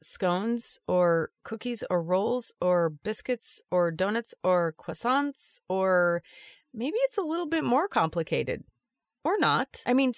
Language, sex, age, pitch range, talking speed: English, female, 30-49, 165-255 Hz, 135 wpm